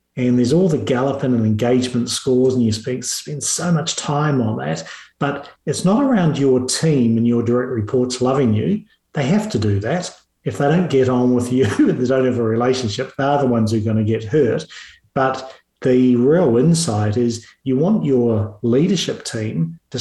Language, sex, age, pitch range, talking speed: English, male, 40-59, 115-130 Hz, 200 wpm